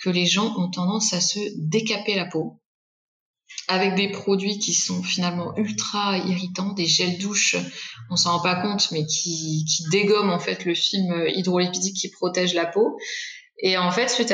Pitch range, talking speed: 175-215 Hz, 180 wpm